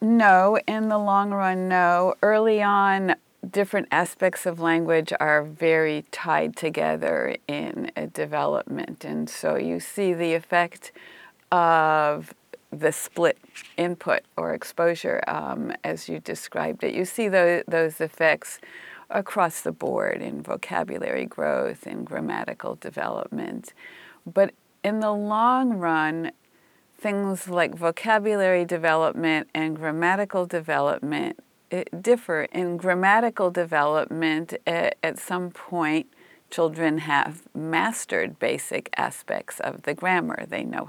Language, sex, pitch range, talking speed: English, female, 165-200 Hz, 115 wpm